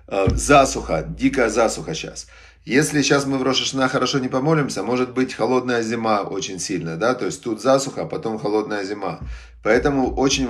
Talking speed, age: 165 wpm, 30-49